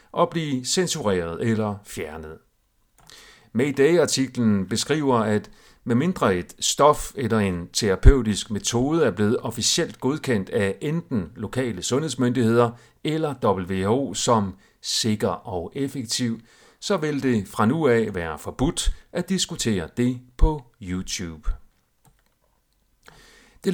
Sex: male